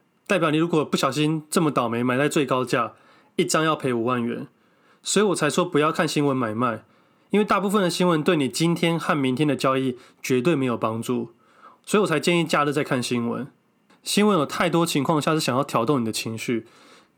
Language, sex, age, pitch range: Chinese, male, 20-39, 130-175 Hz